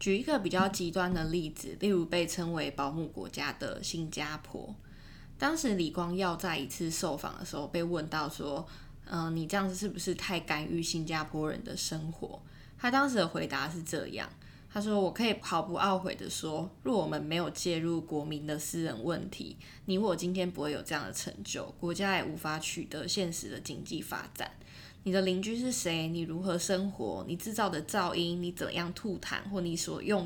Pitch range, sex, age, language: 165-195 Hz, female, 20-39, Chinese